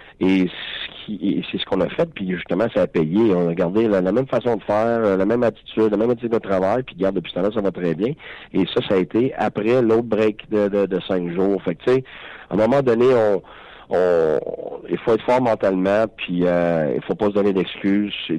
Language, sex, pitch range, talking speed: French, male, 90-105 Hz, 240 wpm